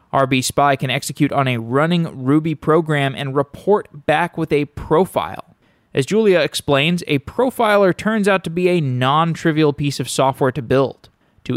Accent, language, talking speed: American, English, 165 wpm